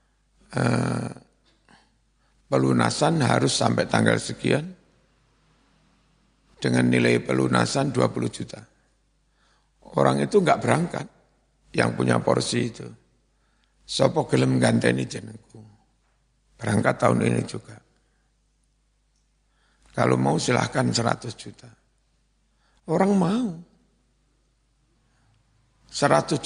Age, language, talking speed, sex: 60-79, Indonesian, 80 wpm, male